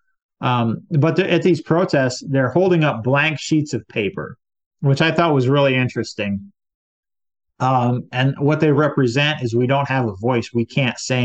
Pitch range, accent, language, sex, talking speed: 120-150 Hz, American, English, male, 175 wpm